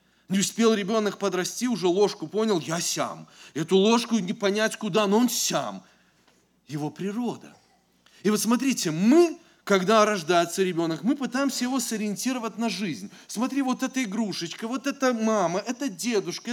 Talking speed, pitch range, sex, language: 150 wpm, 170-240 Hz, male, English